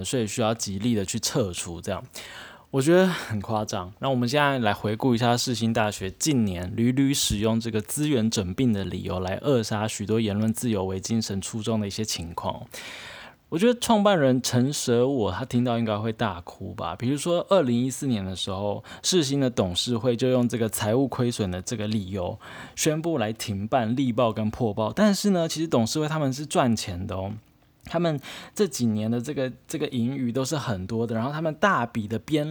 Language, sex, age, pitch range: Chinese, male, 20-39, 105-135 Hz